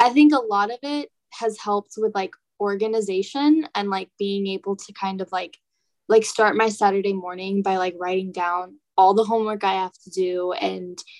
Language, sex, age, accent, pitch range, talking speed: English, female, 10-29, American, 185-215 Hz, 195 wpm